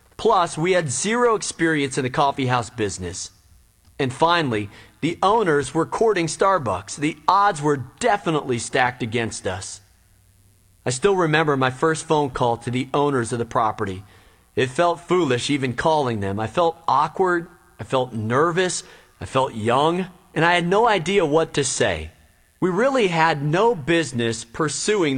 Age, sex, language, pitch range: 40-59, male, English, 115-165 Hz